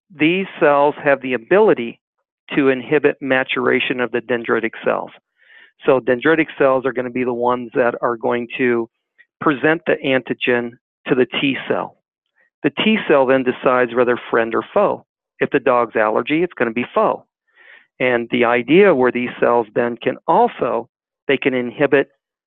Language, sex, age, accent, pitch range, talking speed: English, male, 40-59, American, 125-160 Hz, 160 wpm